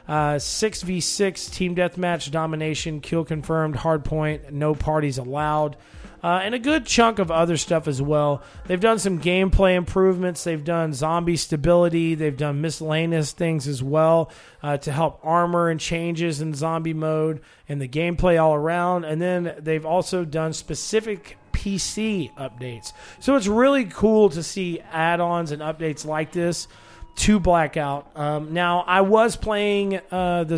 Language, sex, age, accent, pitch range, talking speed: English, male, 30-49, American, 150-175 Hz, 155 wpm